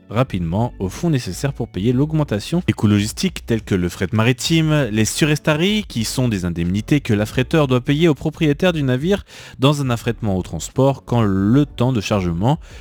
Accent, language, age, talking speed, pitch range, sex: French, French, 30-49, 175 wpm, 95-130 Hz, male